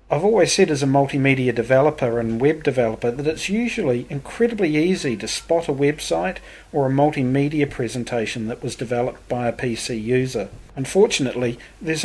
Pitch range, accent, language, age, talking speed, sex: 120-160 Hz, Australian, English, 40-59, 160 wpm, male